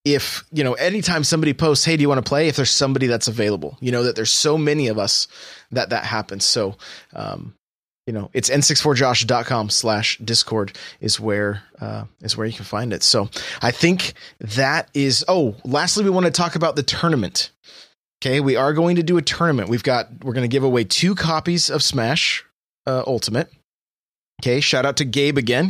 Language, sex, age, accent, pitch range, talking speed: English, male, 20-39, American, 115-155 Hz, 200 wpm